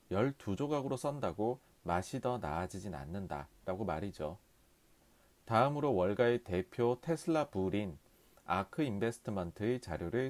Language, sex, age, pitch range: Korean, male, 40-59, 90-135 Hz